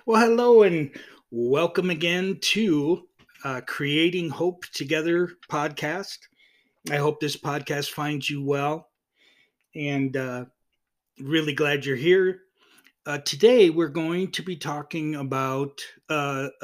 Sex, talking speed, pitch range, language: male, 120 wpm, 140-170 Hz, English